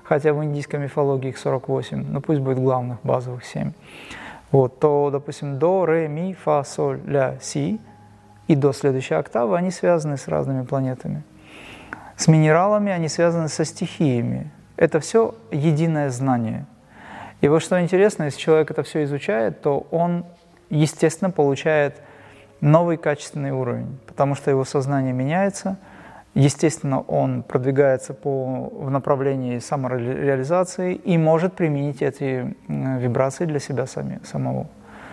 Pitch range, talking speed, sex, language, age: 135-170 Hz, 130 wpm, male, Russian, 30-49